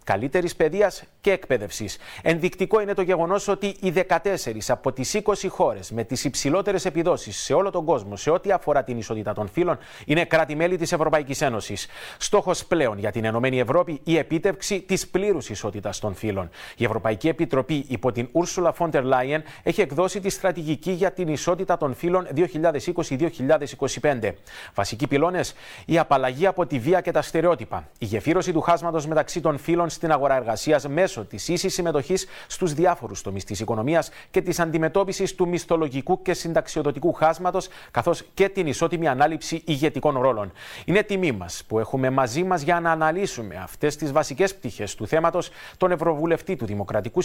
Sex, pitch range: male, 135-180 Hz